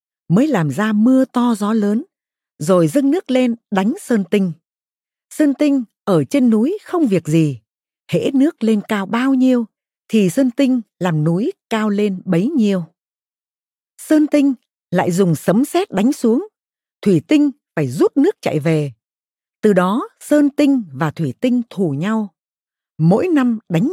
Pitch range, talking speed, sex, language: 170-265 Hz, 160 wpm, female, Vietnamese